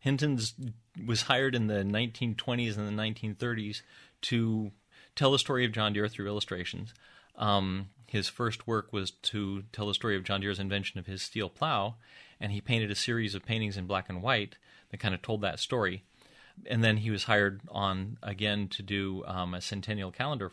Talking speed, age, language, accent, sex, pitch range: 190 wpm, 30-49, English, American, male, 100-115 Hz